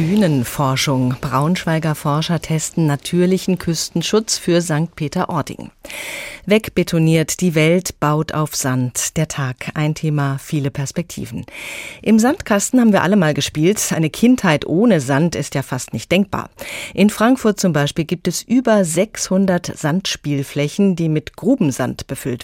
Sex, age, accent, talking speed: female, 30-49, German, 135 wpm